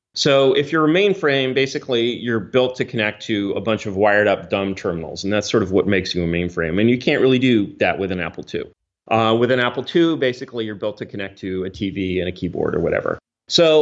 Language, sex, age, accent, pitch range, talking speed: English, male, 30-49, American, 95-130 Hz, 245 wpm